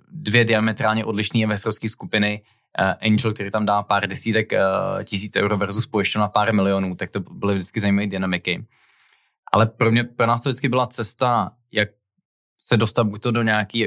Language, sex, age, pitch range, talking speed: Czech, male, 20-39, 100-110 Hz, 170 wpm